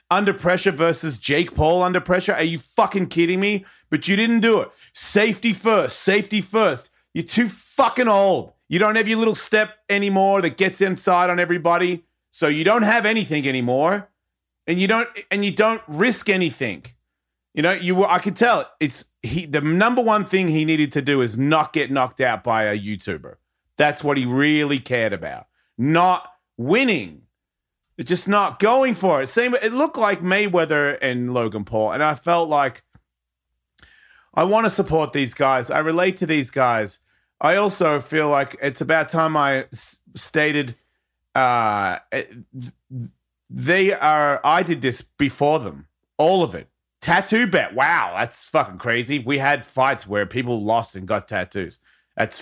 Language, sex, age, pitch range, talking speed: English, male, 30-49, 130-195 Hz, 175 wpm